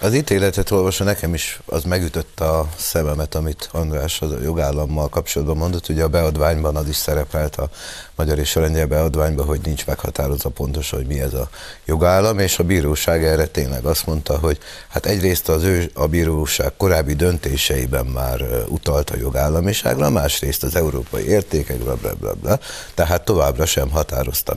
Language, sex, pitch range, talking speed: Hungarian, male, 75-90 Hz, 155 wpm